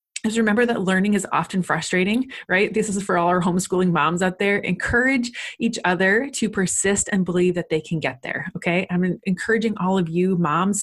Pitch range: 170-215 Hz